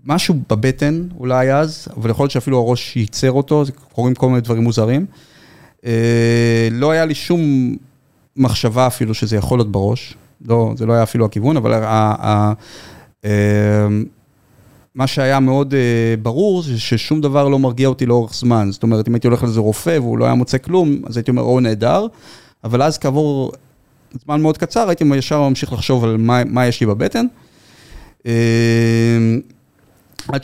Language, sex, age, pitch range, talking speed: Hebrew, male, 30-49, 115-140 Hz, 155 wpm